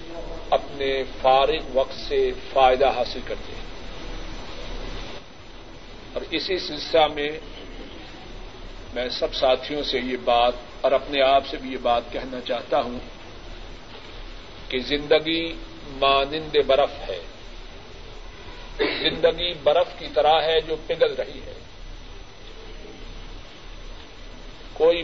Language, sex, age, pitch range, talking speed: Urdu, male, 50-69, 130-185 Hz, 100 wpm